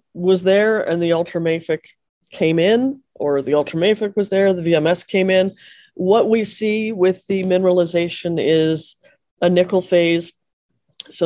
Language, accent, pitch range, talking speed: English, American, 150-200 Hz, 145 wpm